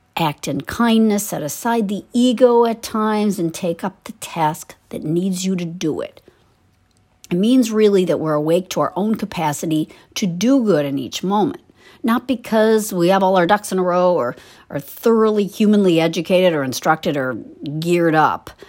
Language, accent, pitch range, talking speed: English, American, 165-230 Hz, 180 wpm